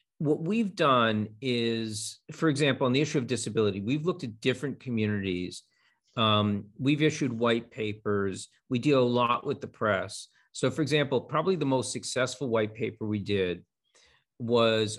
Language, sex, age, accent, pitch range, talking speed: English, male, 40-59, American, 115-160 Hz, 160 wpm